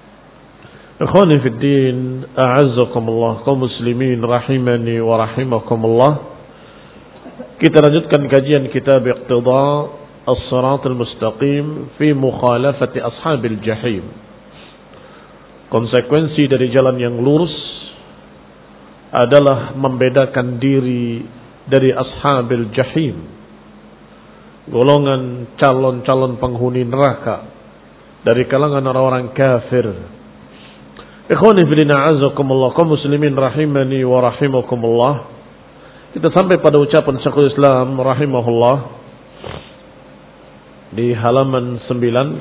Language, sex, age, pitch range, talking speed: Indonesian, male, 50-69, 120-140 Hz, 55 wpm